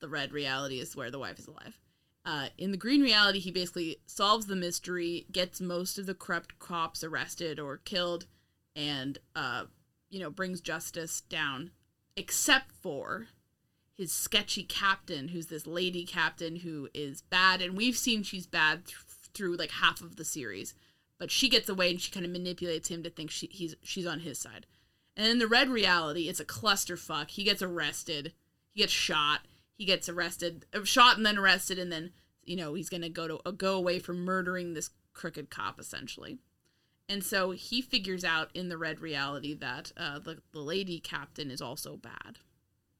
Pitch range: 155-190 Hz